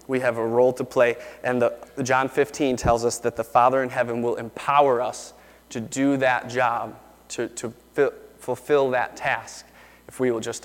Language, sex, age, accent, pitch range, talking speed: English, male, 30-49, American, 115-130 Hz, 190 wpm